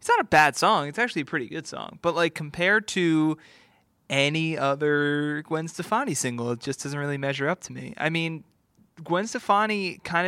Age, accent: 20-39, American